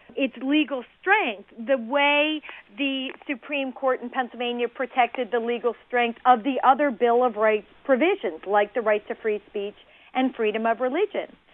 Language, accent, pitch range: English, American, 225-295 Hz